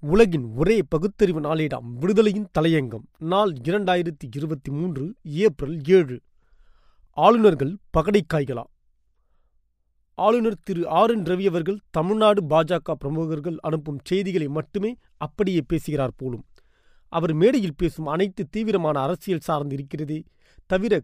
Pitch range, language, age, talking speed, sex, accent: 150-200 Hz, Tamil, 30-49, 110 wpm, male, native